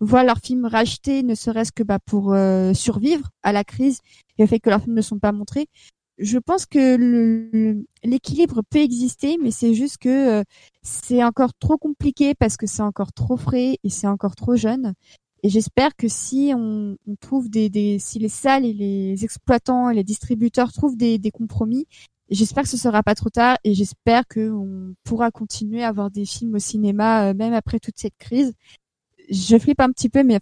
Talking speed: 205 wpm